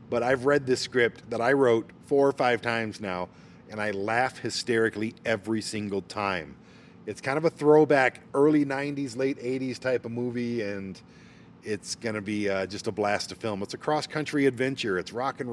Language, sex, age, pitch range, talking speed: English, male, 40-59, 100-130 Hz, 195 wpm